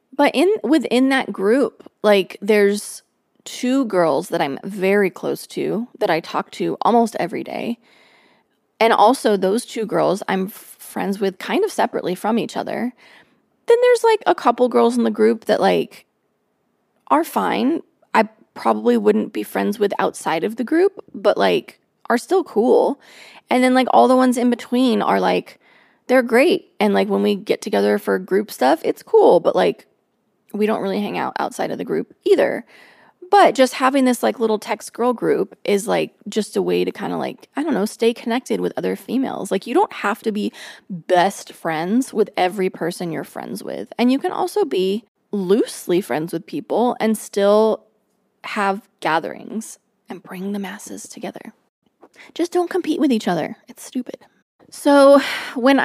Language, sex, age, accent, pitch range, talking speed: English, female, 20-39, American, 200-260 Hz, 180 wpm